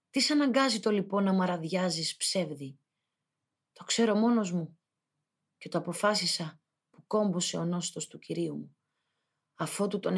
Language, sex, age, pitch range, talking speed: Greek, female, 30-49, 155-185 Hz, 135 wpm